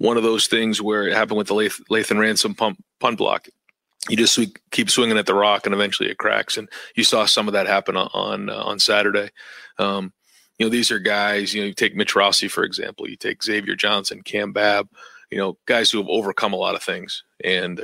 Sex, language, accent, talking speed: male, English, American, 235 wpm